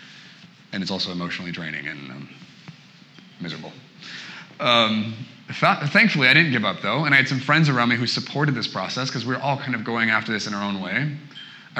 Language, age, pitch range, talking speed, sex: English, 30-49, 110-150 Hz, 210 wpm, male